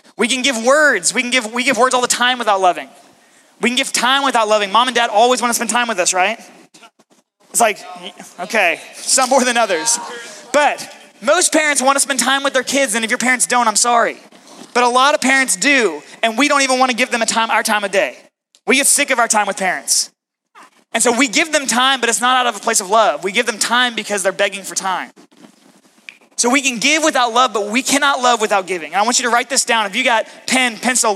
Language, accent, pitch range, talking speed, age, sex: English, American, 225-270 Hz, 255 wpm, 20-39, male